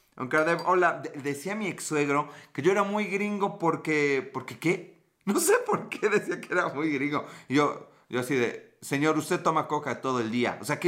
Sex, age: male, 30-49